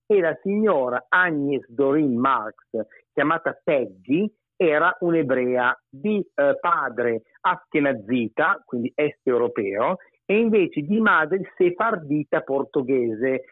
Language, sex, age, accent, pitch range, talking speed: Italian, male, 50-69, native, 125-175 Hz, 100 wpm